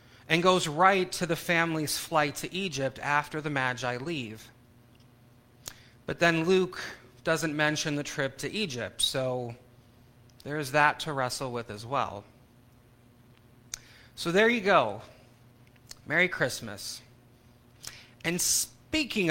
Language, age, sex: English, 30-49, male